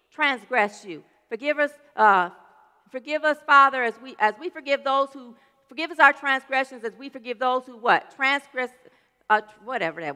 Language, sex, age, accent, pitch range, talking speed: English, female, 40-59, American, 215-295 Hz, 175 wpm